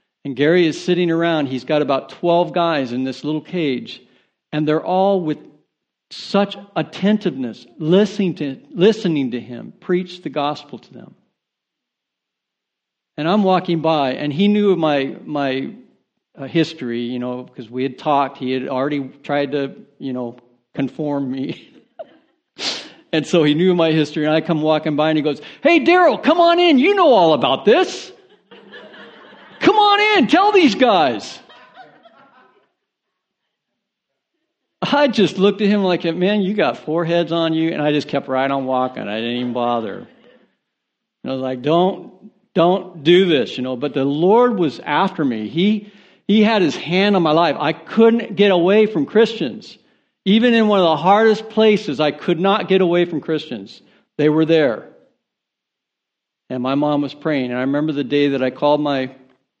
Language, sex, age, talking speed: English, male, 60-79, 170 wpm